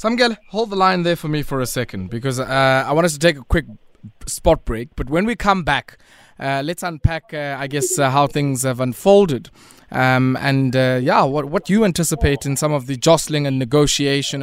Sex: male